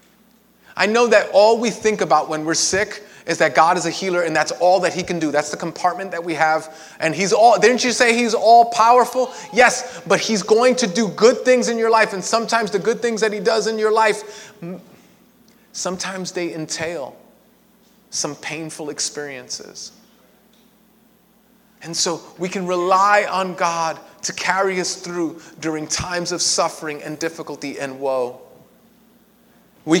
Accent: American